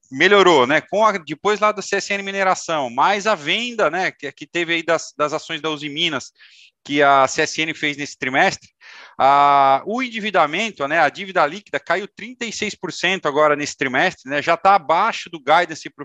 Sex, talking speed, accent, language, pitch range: male, 180 wpm, Brazilian, Portuguese, 140-180 Hz